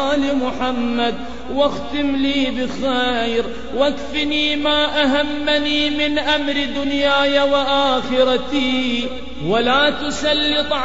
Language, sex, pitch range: English, male, 255-285 Hz